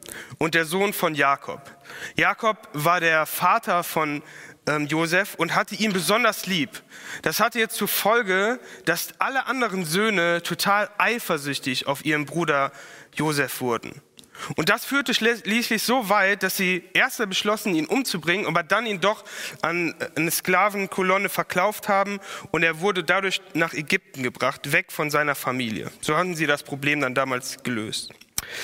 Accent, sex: German, male